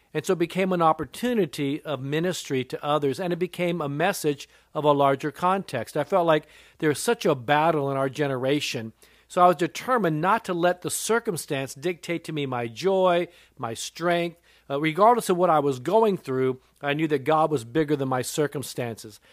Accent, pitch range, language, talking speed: American, 140-175 Hz, English, 190 wpm